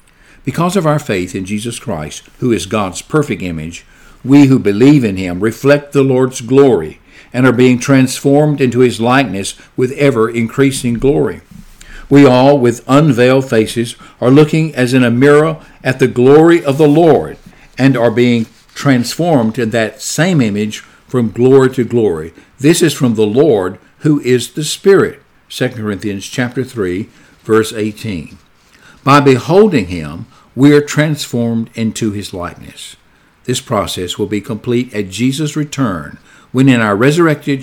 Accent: American